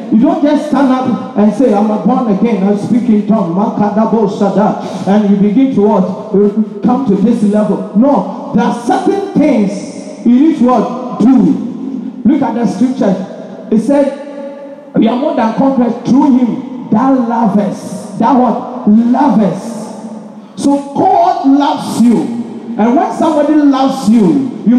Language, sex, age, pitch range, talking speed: English, male, 50-69, 215-270 Hz, 150 wpm